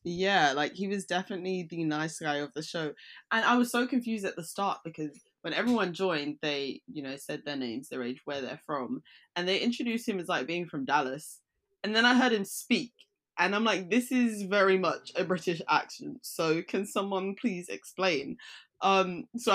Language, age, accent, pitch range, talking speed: English, 10-29, British, 145-220 Hz, 205 wpm